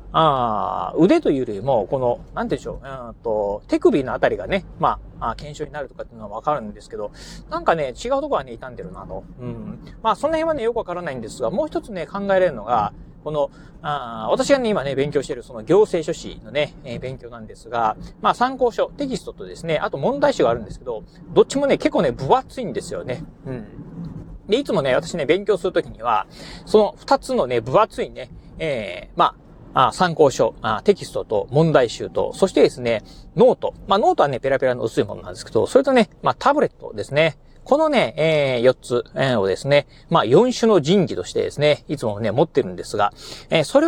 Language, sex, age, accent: Japanese, male, 40-59, native